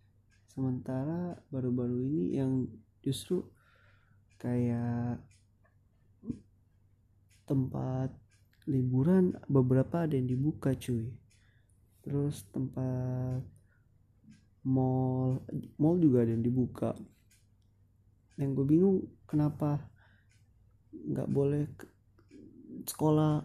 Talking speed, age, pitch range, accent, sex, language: 75 wpm, 20-39, 105-140 Hz, native, male, Indonesian